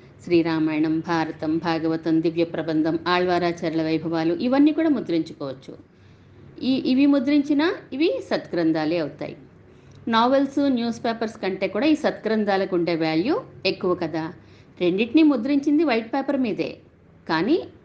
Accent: native